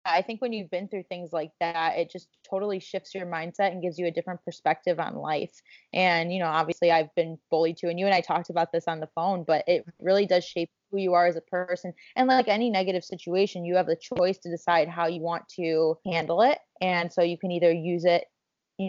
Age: 20-39